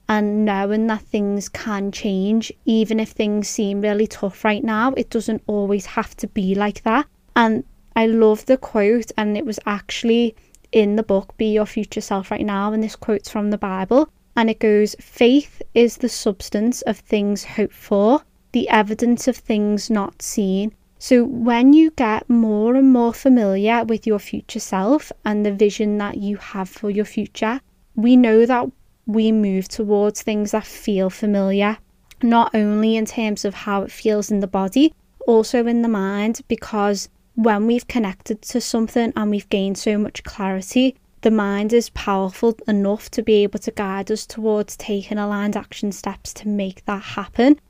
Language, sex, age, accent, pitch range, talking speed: English, female, 20-39, British, 205-230 Hz, 175 wpm